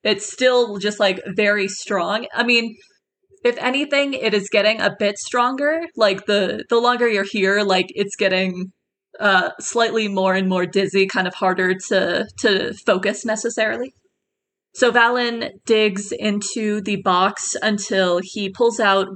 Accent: American